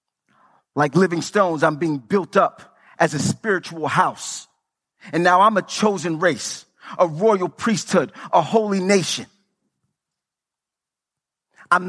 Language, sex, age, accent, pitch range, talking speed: English, male, 30-49, American, 185-255 Hz, 120 wpm